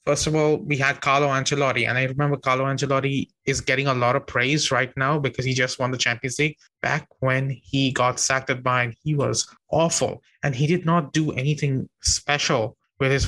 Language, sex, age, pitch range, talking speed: English, male, 20-39, 125-145 Hz, 210 wpm